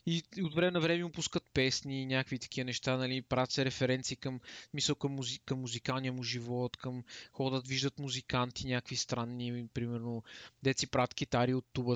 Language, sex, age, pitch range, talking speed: Bulgarian, male, 20-39, 125-170 Hz, 170 wpm